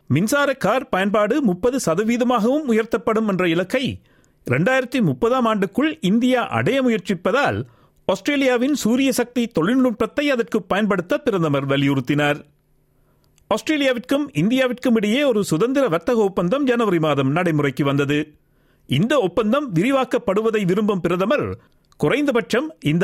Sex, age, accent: male, 50-69, native